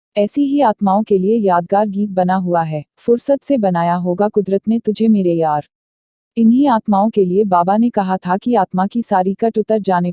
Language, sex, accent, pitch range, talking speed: Hindi, female, native, 180-225 Hz, 200 wpm